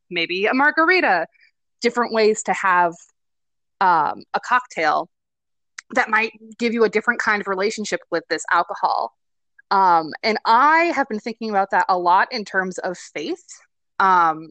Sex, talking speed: female, 155 wpm